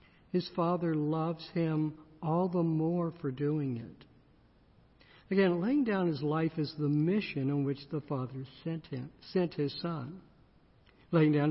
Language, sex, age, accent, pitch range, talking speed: English, male, 60-79, American, 140-175 Hz, 150 wpm